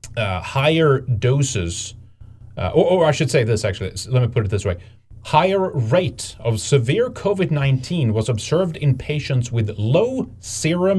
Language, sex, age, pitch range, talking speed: English, male, 30-49, 105-140 Hz, 160 wpm